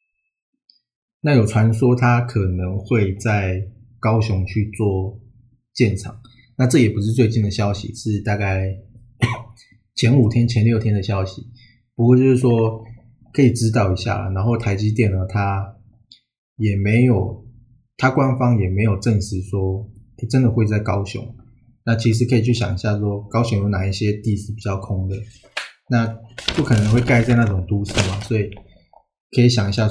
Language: Chinese